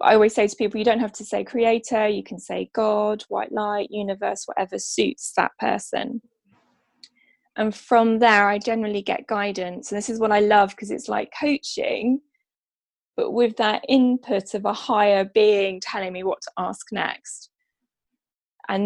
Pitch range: 200-240 Hz